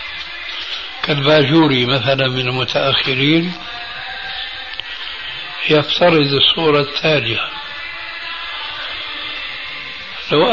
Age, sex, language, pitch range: 60-79, male, Arabic, 135-165 Hz